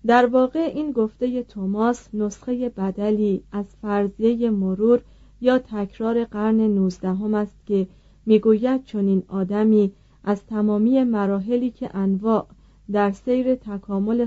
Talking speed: 115 wpm